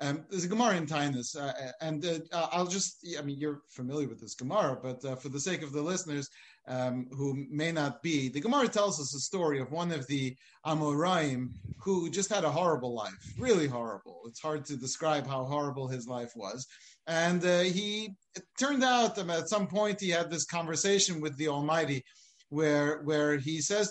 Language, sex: English, male